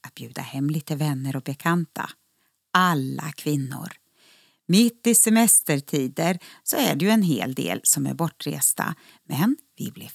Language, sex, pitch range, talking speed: Swedish, female, 140-205 Hz, 140 wpm